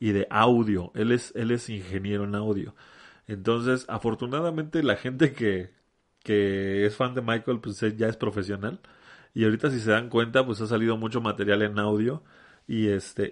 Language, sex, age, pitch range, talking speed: Spanish, male, 30-49, 105-130 Hz, 175 wpm